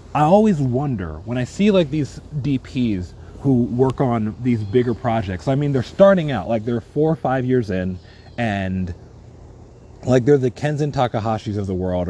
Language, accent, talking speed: English, American, 180 wpm